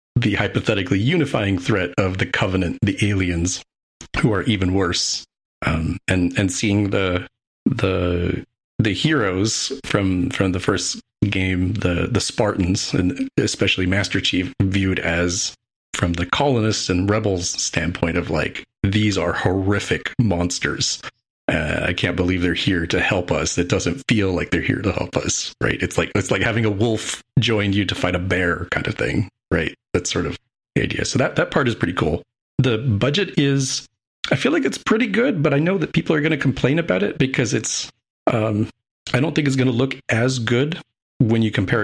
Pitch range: 95-125 Hz